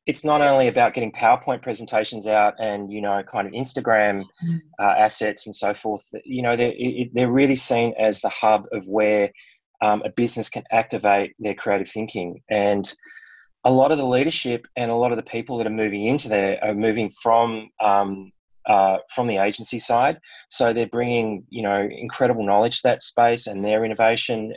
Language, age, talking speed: English, 20-39, 190 wpm